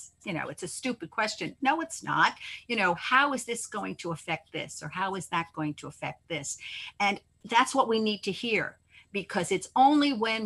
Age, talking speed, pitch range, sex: 50-69, 210 wpm, 165-225 Hz, female